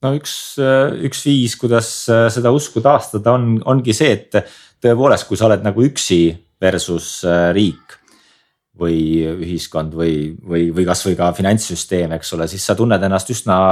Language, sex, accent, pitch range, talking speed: English, male, Finnish, 85-110 Hz, 160 wpm